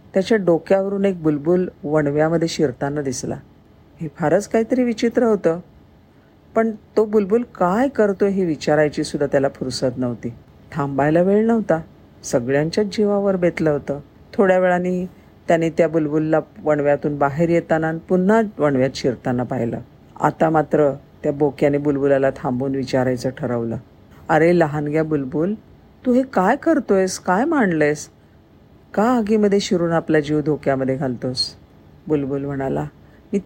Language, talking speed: Marathi, 125 wpm